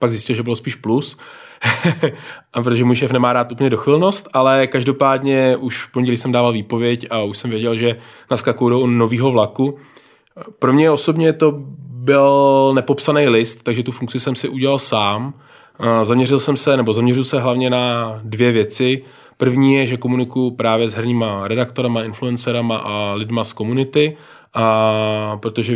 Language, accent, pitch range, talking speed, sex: Czech, native, 115-130 Hz, 160 wpm, male